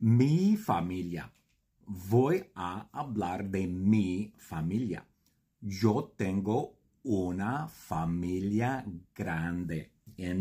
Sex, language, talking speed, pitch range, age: male, English, 80 wpm, 85-110 Hz, 50-69